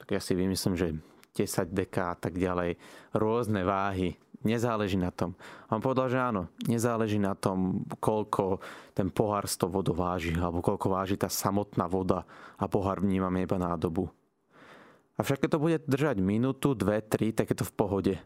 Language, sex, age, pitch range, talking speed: Slovak, male, 30-49, 95-120 Hz, 175 wpm